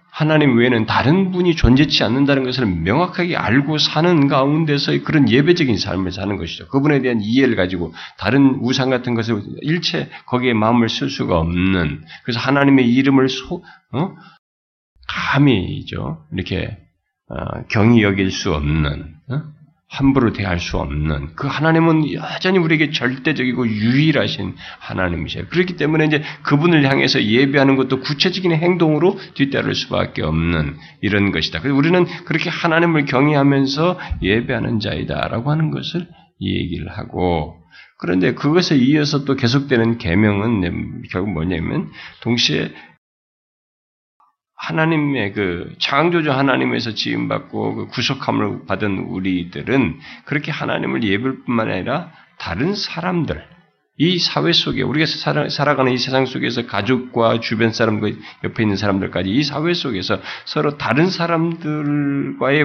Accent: native